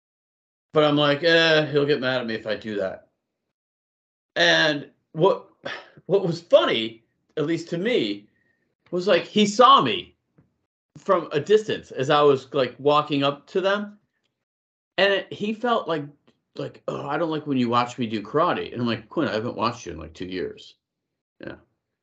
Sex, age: male, 50-69